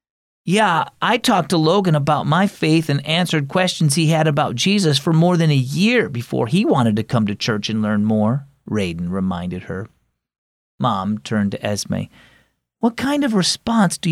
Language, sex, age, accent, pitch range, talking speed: English, male, 40-59, American, 115-170 Hz, 180 wpm